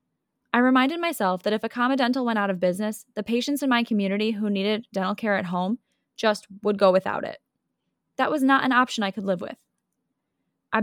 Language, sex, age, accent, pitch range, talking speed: English, female, 10-29, American, 190-235 Hz, 210 wpm